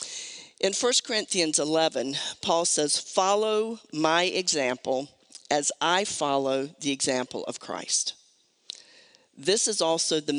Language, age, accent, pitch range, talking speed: English, 50-69, American, 140-205 Hz, 115 wpm